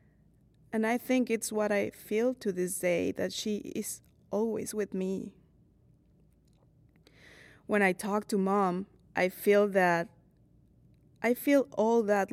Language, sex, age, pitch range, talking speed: English, female, 20-39, 185-225 Hz, 135 wpm